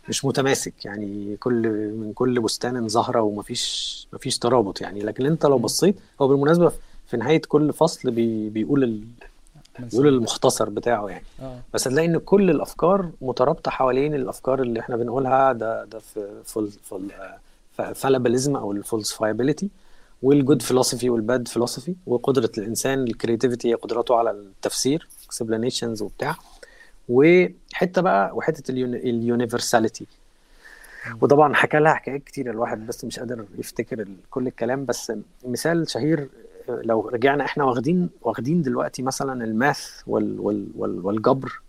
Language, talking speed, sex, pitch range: Arabic, 130 wpm, male, 115-140 Hz